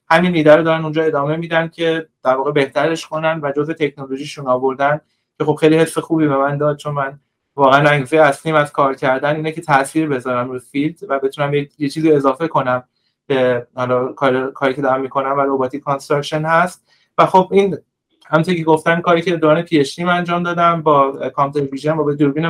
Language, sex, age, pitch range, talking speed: Persian, male, 30-49, 140-165 Hz, 180 wpm